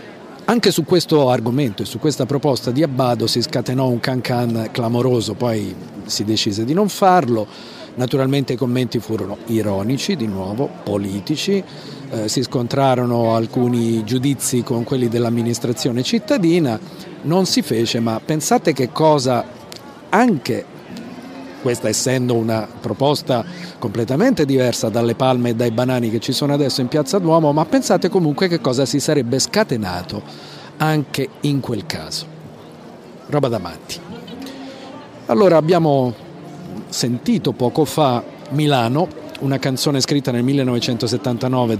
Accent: native